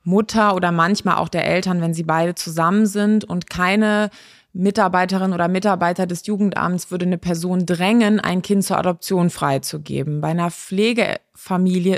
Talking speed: 150 wpm